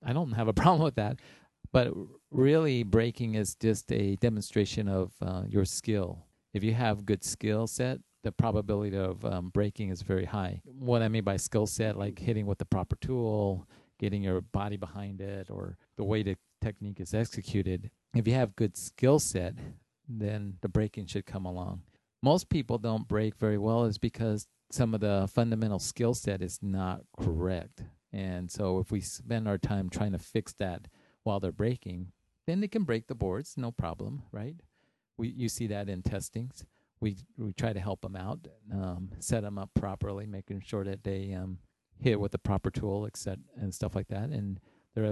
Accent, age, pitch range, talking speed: American, 40-59, 100-115 Hz, 190 wpm